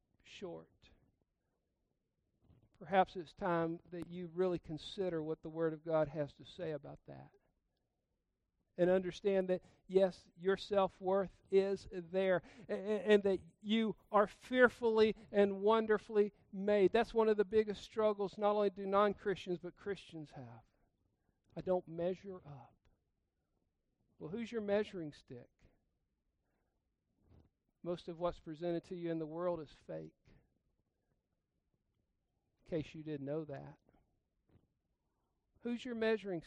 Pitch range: 190-295 Hz